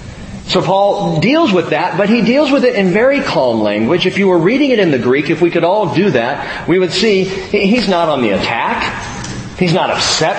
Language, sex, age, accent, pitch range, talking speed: English, male, 40-59, American, 145-200 Hz, 225 wpm